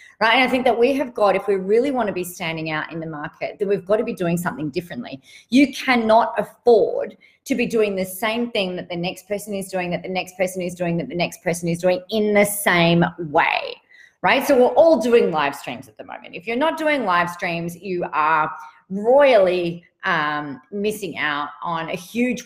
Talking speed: 220 wpm